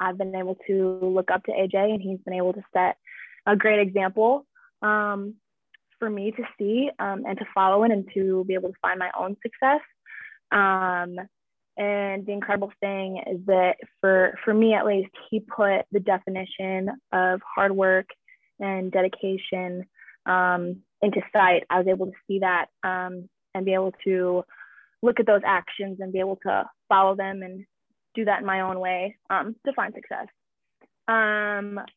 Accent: American